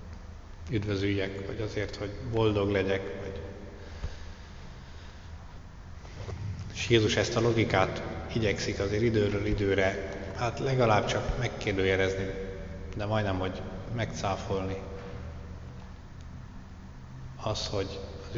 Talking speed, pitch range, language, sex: 80 wpm, 95-105 Hz, Hungarian, male